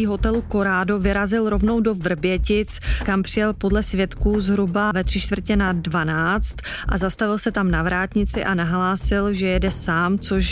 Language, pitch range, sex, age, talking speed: Czech, 185-205 Hz, female, 30-49, 160 wpm